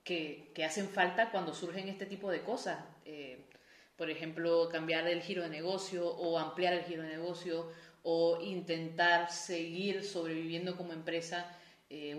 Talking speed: 155 wpm